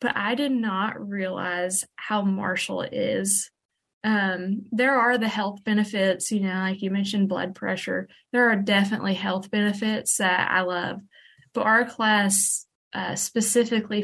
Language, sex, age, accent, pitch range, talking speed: English, female, 20-39, American, 190-225 Hz, 145 wpm